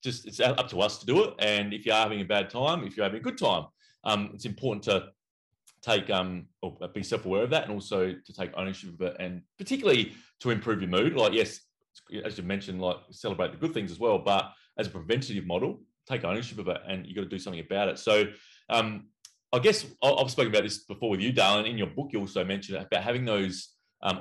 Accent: Australian